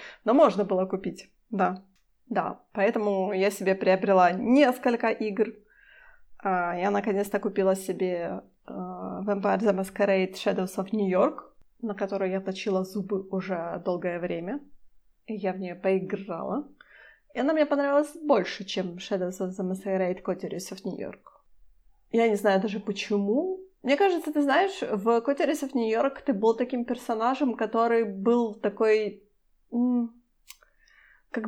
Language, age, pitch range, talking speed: Ukrainian, 20-39, 195-245 Hz, 135 wpm